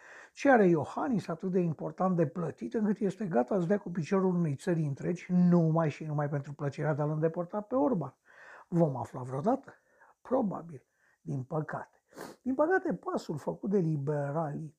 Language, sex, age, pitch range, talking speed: Romanian, male, 60-79, 155-220 Hz, 160 wpm